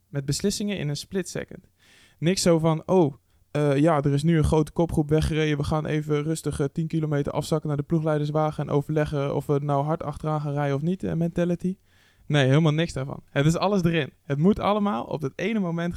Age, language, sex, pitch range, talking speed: 20-39, Dutch, male, 140-180 Hz, 215 wpm